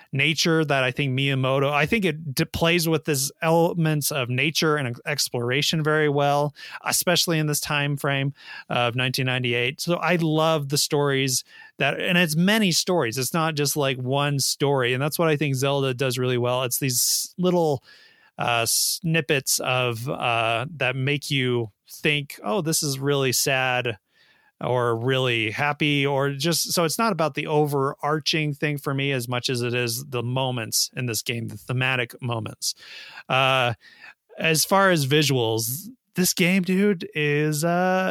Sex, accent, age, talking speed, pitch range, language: male, American, 30-49, 165 wpm, 130-170 Hz, English